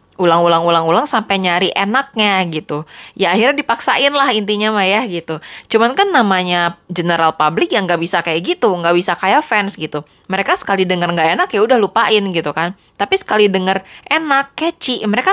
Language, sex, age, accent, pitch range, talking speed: Indonesian, female, 20-39, native, 170-235 Hz, 175 wpm